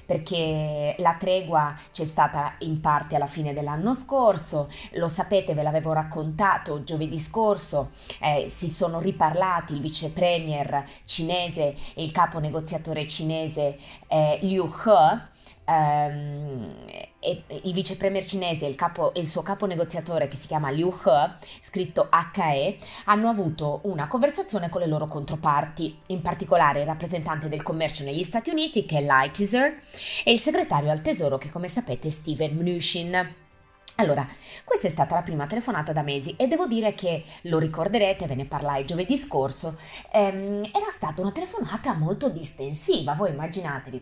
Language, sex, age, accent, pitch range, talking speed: Italian, female, 20-39, native, 150-195 Hz, 155 wpm